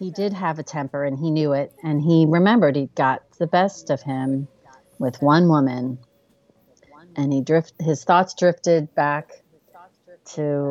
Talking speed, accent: 170 wpm, American